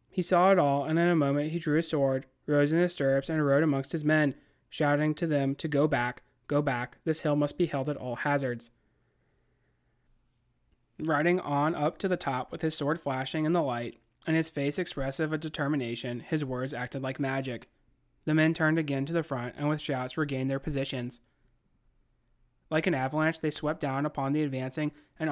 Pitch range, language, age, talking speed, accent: 130-160 Hz, English, 30-49, 200 wpm, American